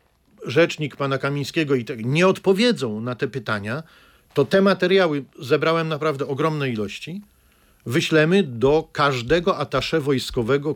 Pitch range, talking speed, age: 125-175 Hz, 115 wpm, 50-69